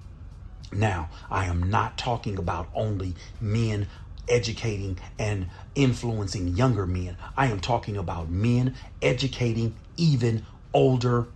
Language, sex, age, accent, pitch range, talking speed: English, male, 40-59, American, 90-110 Hz, 110 wpm